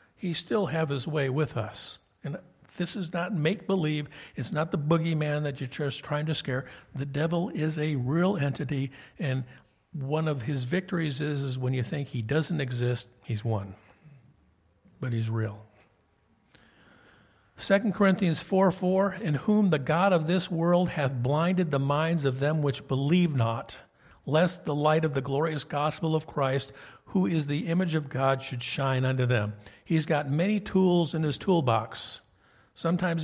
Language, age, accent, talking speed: English, 50-69, American, 170 wpm